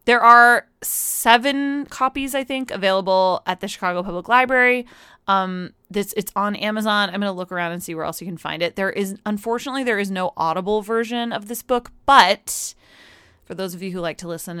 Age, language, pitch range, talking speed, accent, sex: 20-39, English, 175-230 Hz, 205 wpm, American, female